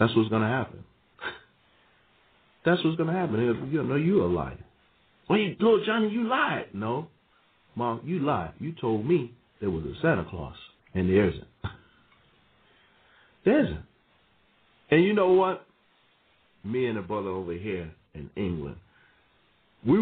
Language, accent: English, American